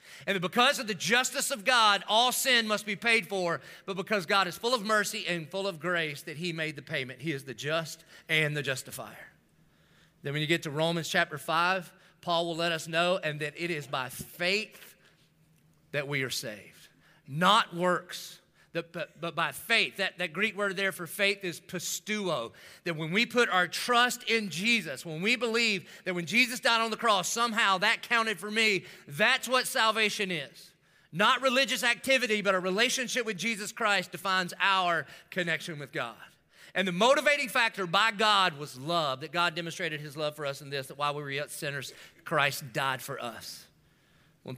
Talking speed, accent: 190 wpm, American